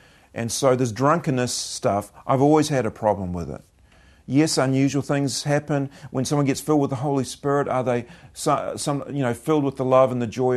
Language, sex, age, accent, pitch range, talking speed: English, male, 40-59, Australian, 105-130 Hz, 210 wpm